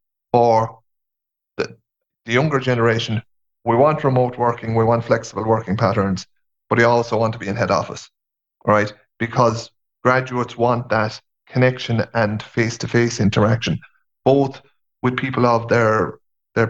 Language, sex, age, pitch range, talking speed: English, male, 30-49, 105-125 Hz, 135 wpm